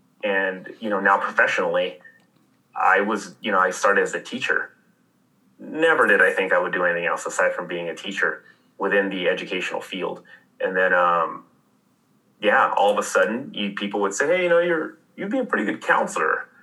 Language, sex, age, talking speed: English, male, 30-49, 195 wpm